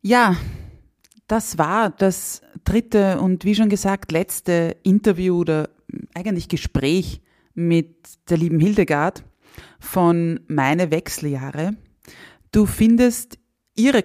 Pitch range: 155-195 Hz